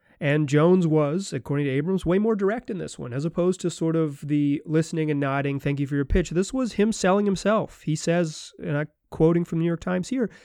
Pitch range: 125-175 Hz